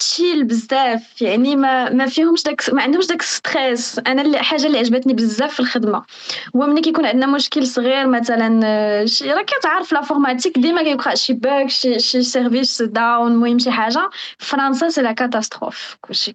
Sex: female